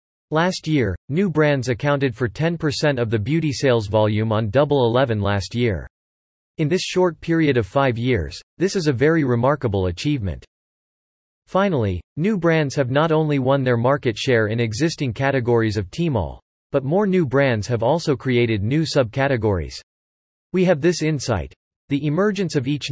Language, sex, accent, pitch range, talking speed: English, male, American, 110-150 Hz, 160 wpm